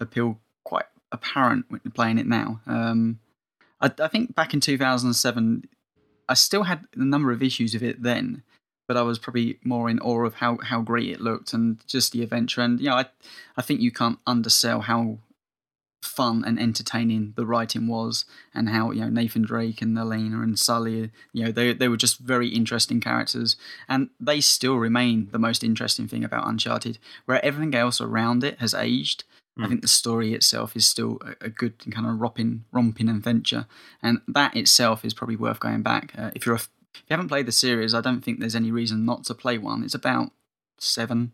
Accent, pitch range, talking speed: British, 115-125 Hz, 200 wpm